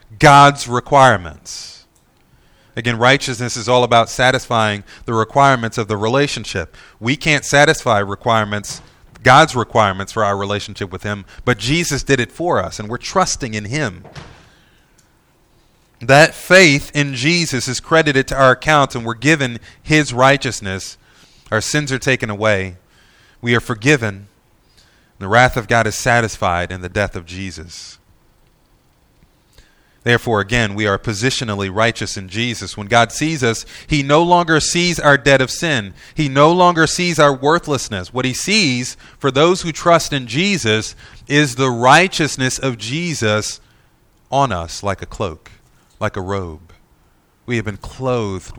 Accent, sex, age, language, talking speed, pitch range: American, male, 30-49, English, 150 wpm, 105-140 Hz